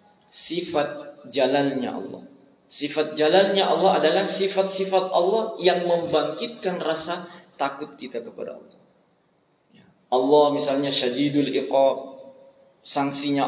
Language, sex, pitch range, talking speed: Indonesian, male, 140-200 Hz, 95 wpm